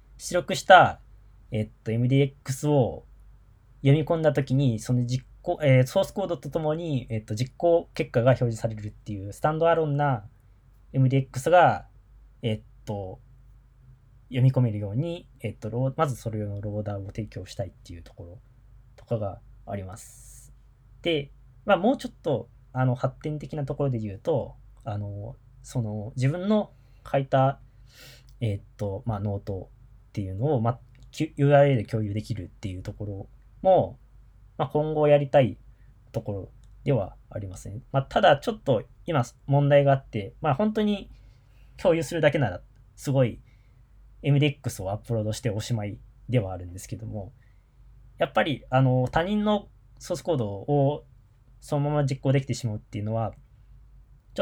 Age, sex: 20-39, male